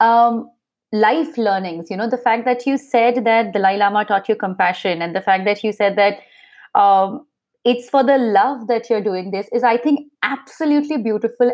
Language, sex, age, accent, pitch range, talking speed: English, female, 30-49, Indian, 195-245 Hz, 190 wpm